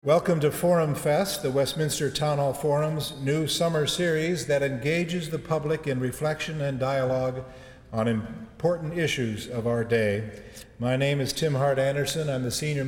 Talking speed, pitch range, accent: 165 wpm, 130-155 Hz, American